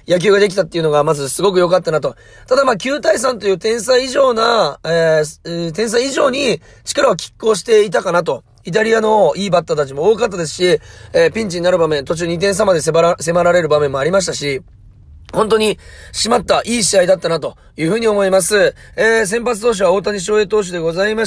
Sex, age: male, 30-49